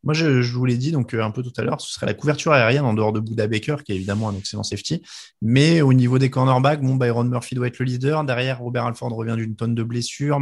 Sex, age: male, 20-39